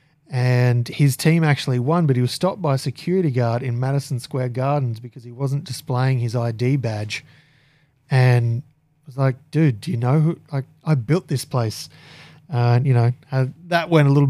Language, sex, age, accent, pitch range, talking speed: English, male, 20-39, Australian, 130-150 Hz, 195 wpm